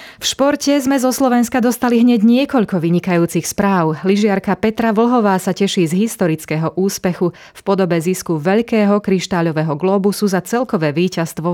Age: 30-49